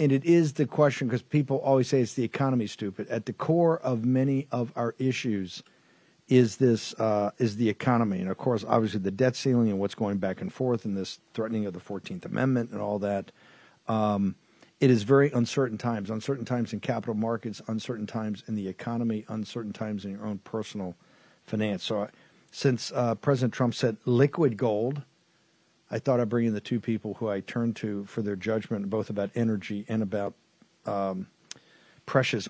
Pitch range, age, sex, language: 105-130 Hz, 50-69, male, English